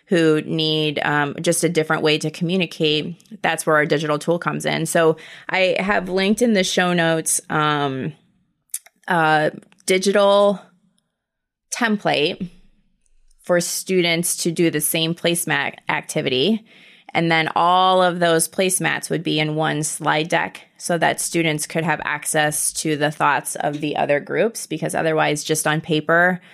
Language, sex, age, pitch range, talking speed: English, female, 20-39, 155-185 Hz, 150 wpm